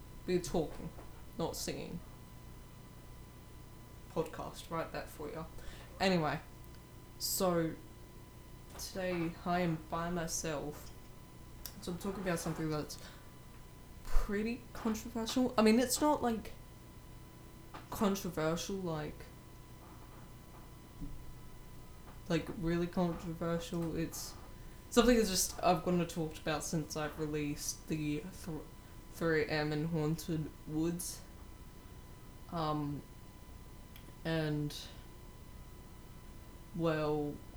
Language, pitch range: English, 150-185 Hz